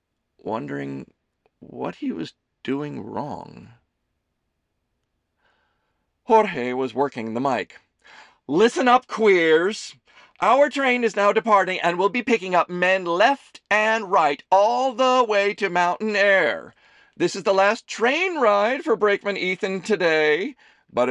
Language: English